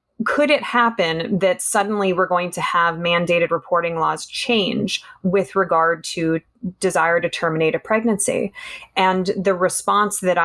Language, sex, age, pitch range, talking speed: English, female, 20-39, 170-205 Hz, 145 wpm